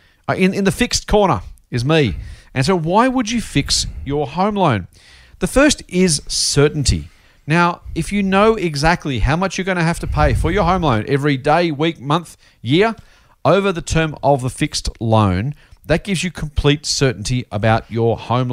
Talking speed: 185 wpm